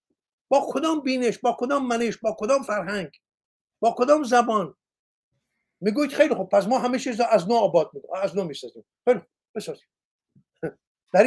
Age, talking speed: 50-69, 145 wpm